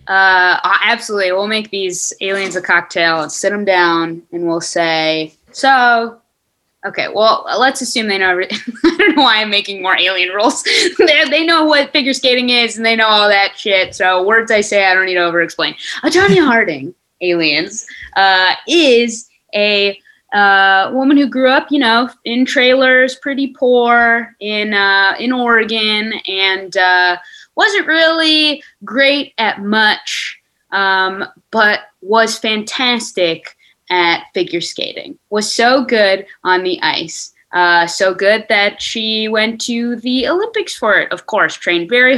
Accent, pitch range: American, 185-255 Hz